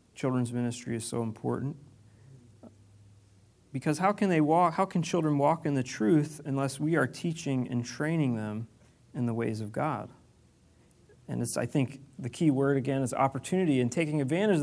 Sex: male